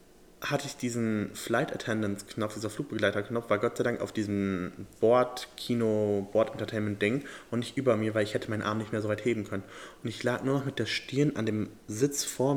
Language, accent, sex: German, German, male